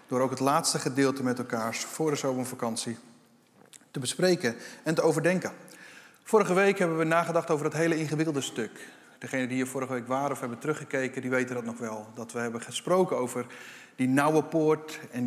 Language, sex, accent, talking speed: Dutch, male, Dutch, 190 wpm